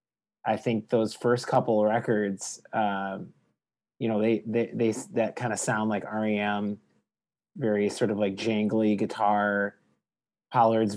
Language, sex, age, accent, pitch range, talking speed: English, male, 20-39, American, 110-125 Hz, 140 wpm